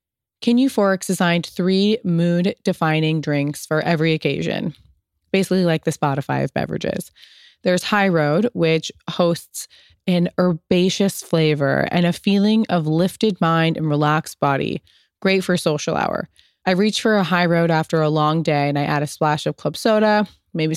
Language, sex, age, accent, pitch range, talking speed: English, female, 20-39, American, 155-185 Hz, 155 wpm